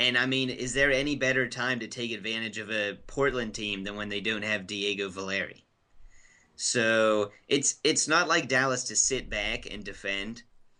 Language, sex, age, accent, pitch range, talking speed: English, male, 30-49, American, 105-120 Hz, 185 wpm